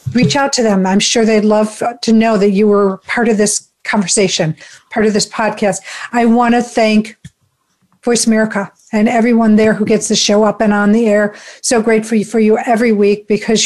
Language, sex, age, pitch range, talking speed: English, female, 50-69, 200-230 Hz, 200 wpm